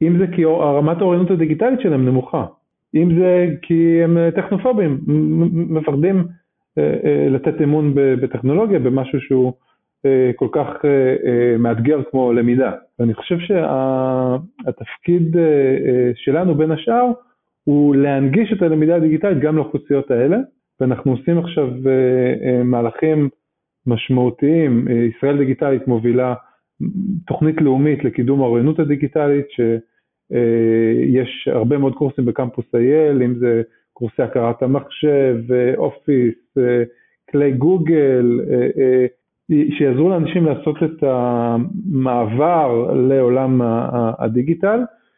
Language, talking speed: Hebrew, 95 wpm